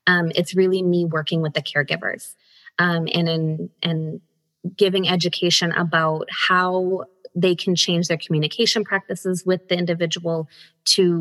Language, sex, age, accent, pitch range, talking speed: English, female, 20-39, American, 165-205 Hz, 145 wpm